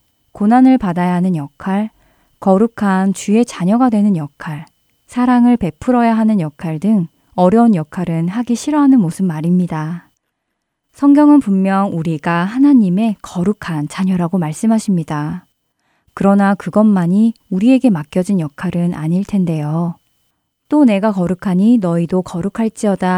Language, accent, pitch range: Korean, native, 170-225 Hz